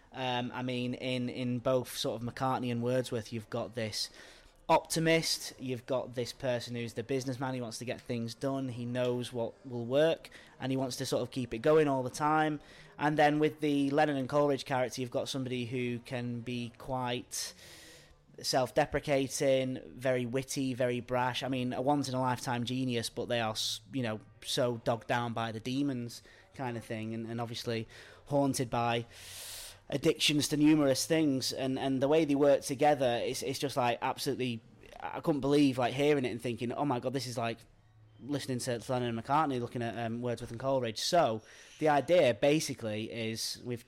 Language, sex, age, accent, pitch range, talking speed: English, male, 20-39, British, 120-135 Hz, 185 wpm